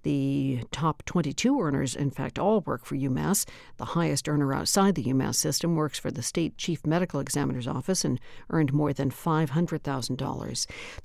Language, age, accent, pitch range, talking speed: English, 60-79, American, 140-185 Hz, 165 wpm